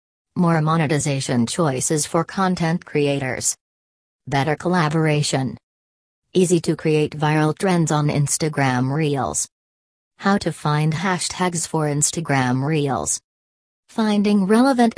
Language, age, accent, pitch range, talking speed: English, 40-59, American, 135-170 Hz, 100 wpm